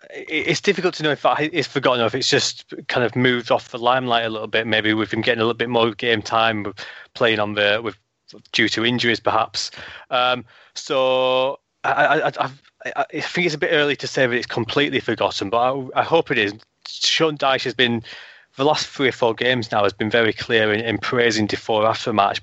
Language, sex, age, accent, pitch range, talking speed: English, male, 20-39, British, 110-130 Hz, 220 wpm